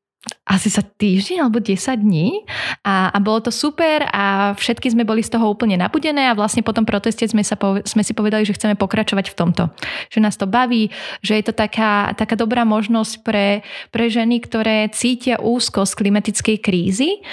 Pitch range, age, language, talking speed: 195-230 Hz, 30-49, Slovak, 185 wpm